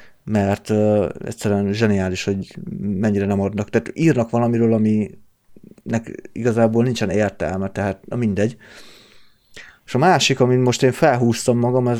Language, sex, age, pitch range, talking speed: Hungarian, male, 30-49, 105-120 Hz, 125 wpm